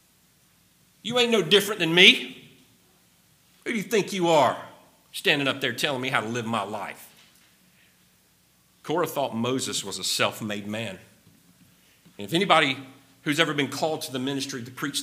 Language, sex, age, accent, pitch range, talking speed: English, male, 50-69, American, 105-145 Hz, 165 wpm